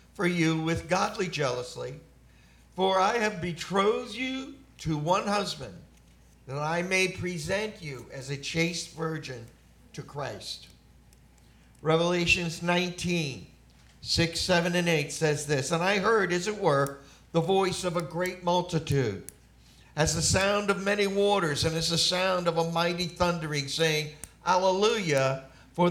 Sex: male